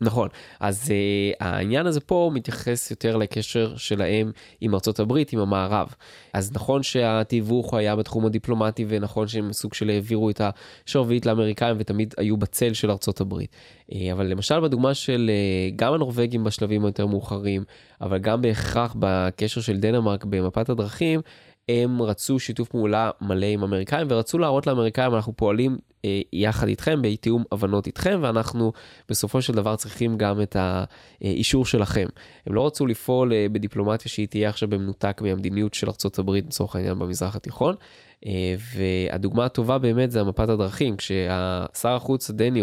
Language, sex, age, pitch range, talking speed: Hebrew, male, 20-39, 100-120 Hz, 145 wpm